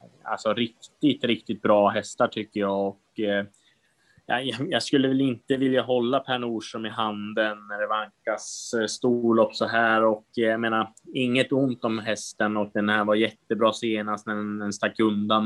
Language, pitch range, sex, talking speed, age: Swedish, 105-115 Hz, male, 185 wpm, 20-39